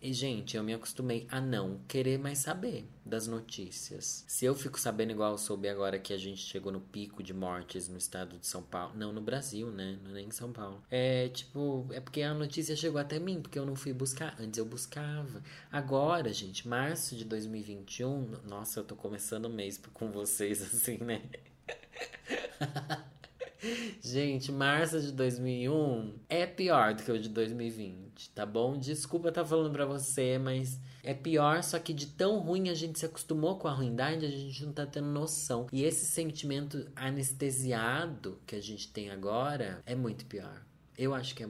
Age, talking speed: 20-39, 185 wpm